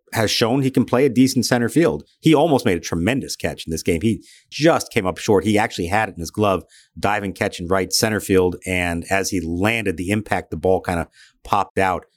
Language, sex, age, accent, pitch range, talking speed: English, male, 50-69, American, 90-115 Hz, 235 wpm